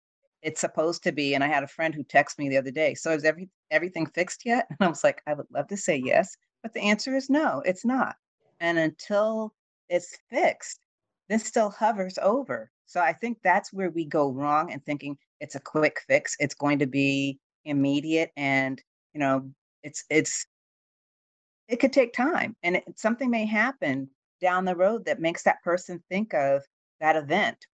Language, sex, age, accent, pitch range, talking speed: English, female, 40-59, American, 140-180 Hz, 195 wpm